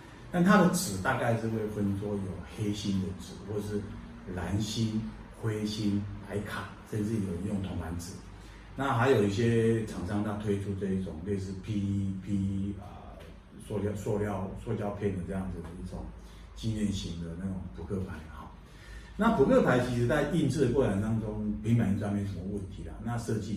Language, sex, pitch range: Chinese, male, 95-115 Hz